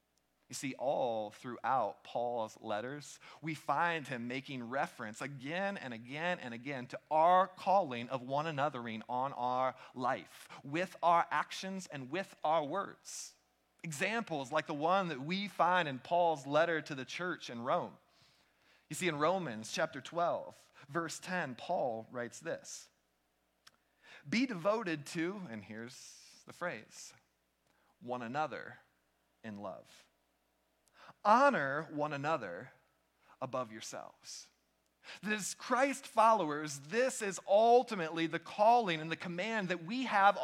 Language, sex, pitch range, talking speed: English, male, 140-225 Hz, 130 wpm